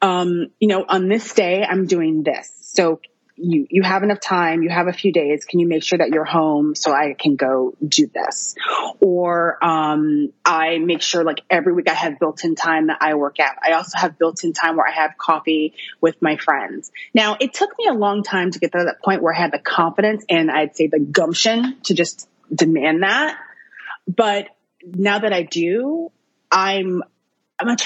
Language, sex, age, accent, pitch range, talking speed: English, female, 30-49, American, 165-215 Hz, 210 wpm